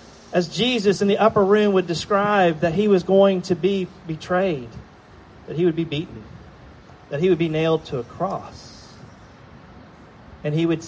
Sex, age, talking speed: male, 40-59, 170 wpm